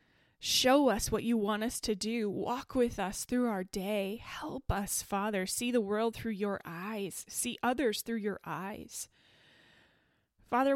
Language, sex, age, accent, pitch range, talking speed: English, female, 20-39, American, 195-235 Hz, 160 wpm